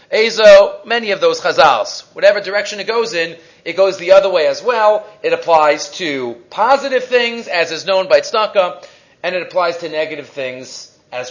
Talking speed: 180 wpm